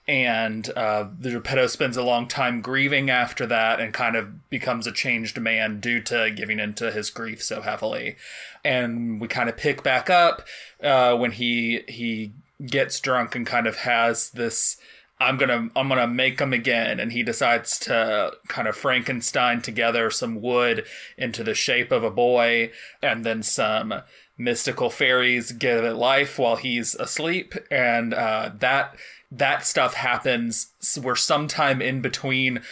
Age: 20-39